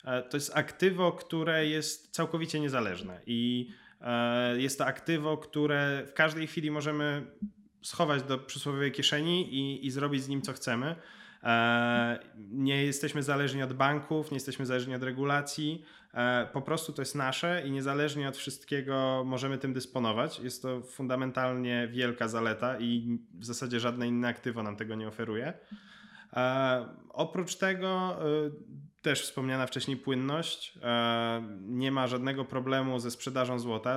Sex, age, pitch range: male, 20-39, 120-150 Hz